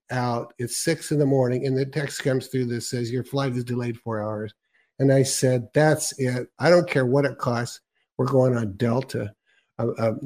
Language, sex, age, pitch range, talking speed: English, male, 50-69, 115-140 Hz, 210 wpm